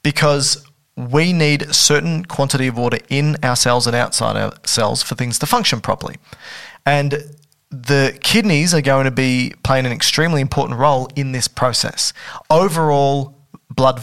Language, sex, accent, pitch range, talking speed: English, male, Australian, 125-155 Hz, 160 wpm